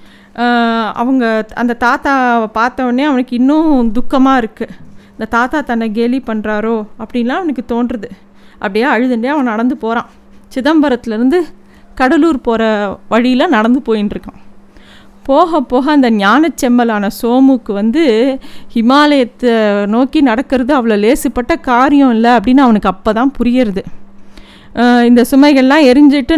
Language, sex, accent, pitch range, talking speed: Tamil, female, native, 225-275 Hz, 115 wpm